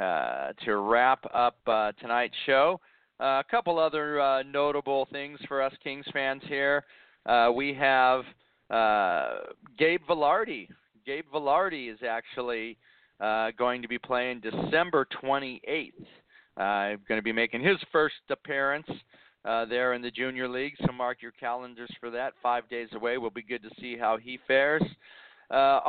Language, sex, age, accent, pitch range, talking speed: English, male, 40-59, American, 125-160 Hz, 155 wpm